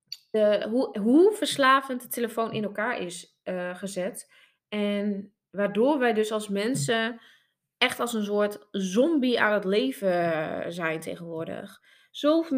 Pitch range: 210-255 Hz